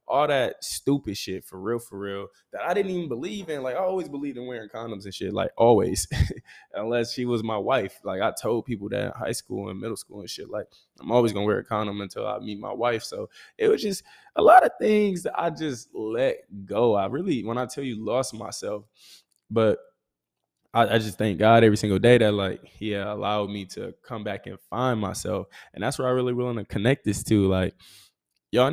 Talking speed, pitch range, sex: 230 wpm, 105-130 Hz, male